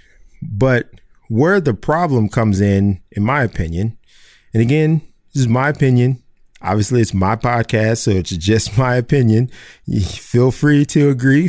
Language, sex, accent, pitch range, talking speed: English, male, American, 110-140 Hz, 145 wpm